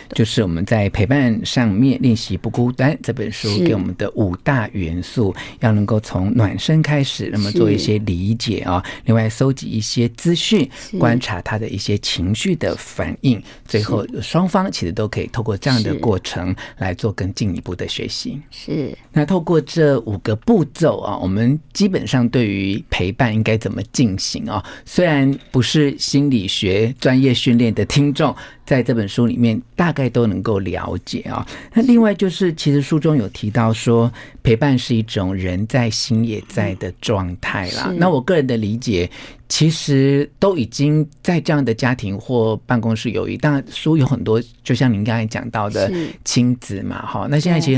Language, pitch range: Chinese, 110-140 Hz